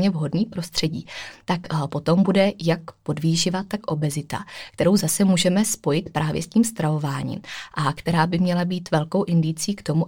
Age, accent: 20-39, native